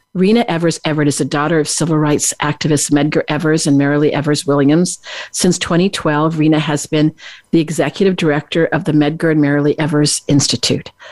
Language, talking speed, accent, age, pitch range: English, 165 wpm, American, 50-69, 150-180 Hz